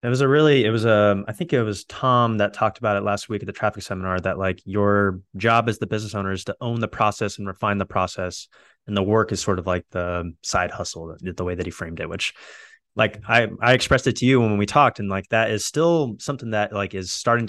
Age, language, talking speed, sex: 20-39, English, 260 wpm, male